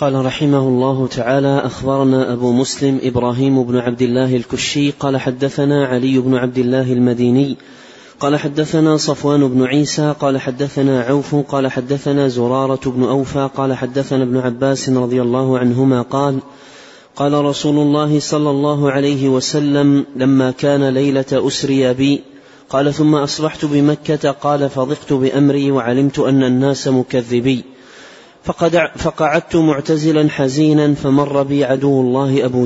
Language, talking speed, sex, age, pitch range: Arabic, 130 wpm, male, 30-49, 130-145 Hz